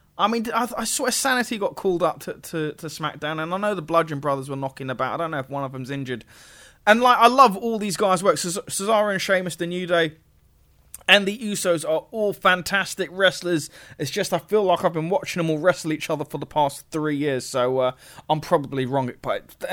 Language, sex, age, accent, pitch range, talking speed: English, male, 20-39, British, 140-190 Hz, 235 wpm